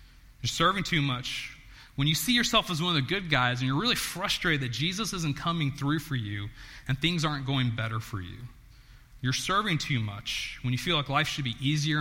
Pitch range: 115-150 Hz